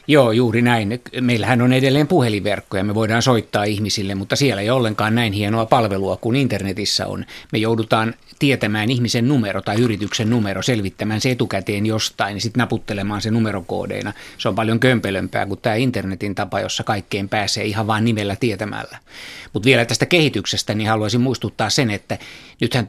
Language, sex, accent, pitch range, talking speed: Finnish, male, native, 105-125 Hz, 170 wpm